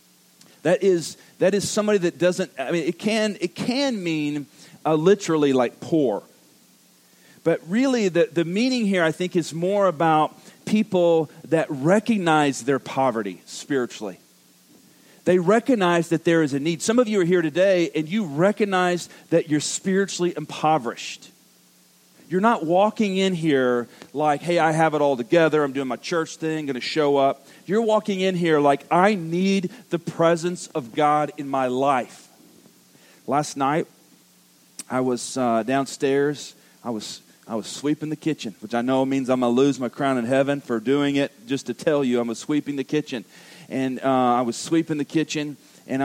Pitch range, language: 135-180 Hz, English